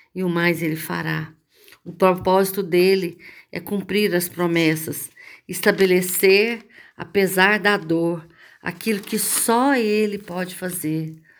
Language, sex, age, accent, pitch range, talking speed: Portuguese, female, 50-69, Brazilian, 170-195 Hz, 115 wpm